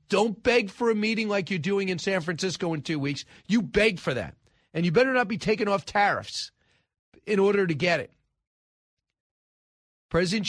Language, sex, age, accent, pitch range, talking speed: English, male, 40-59, American, 140-195 Hz, 185 wpm